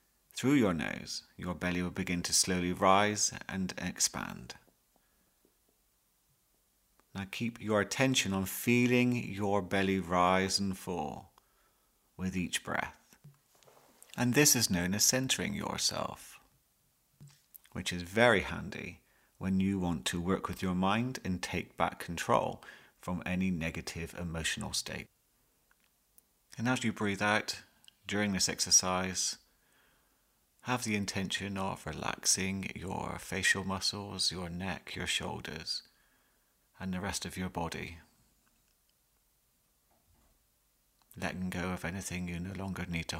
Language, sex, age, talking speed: English, male, 30-49, 125 wpm